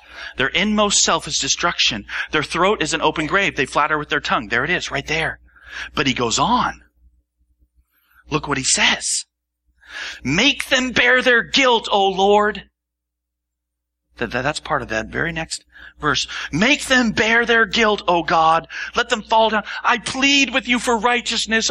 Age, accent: 40-59, American